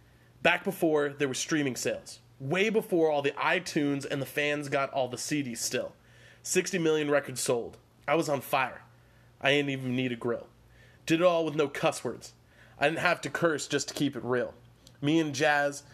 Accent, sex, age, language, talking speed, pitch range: American, male, 20-39, English, 200 wpm, 120-145 Hz